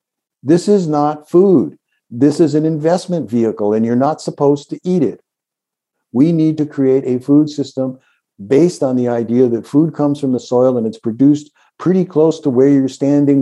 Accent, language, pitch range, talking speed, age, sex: American, English, 125-150 Hz, 190 wpm, 60-79, male